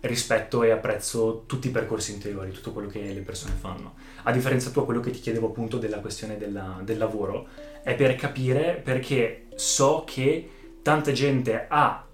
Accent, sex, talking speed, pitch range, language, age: native, male, 175 wpm, 110-135 Hz, Italian, 20-39